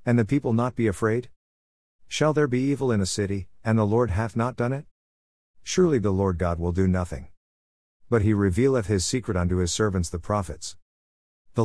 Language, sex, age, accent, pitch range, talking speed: English, male, 50-69, American, 80-115 Hz, 195 wpm